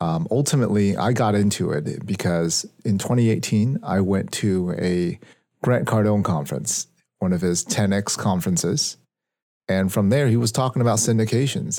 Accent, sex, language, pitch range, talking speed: American, male, English, 95-120 Hz, 155 wpm